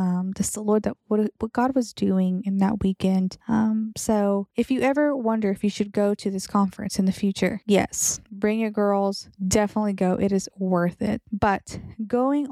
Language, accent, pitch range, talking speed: English, American, 190-220 Hz, 190 wpm